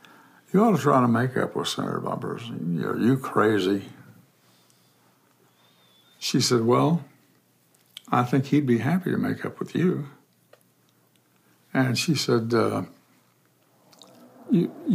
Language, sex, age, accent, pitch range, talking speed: English, male, 60-79, American, 115-140 Hz, 120 wpm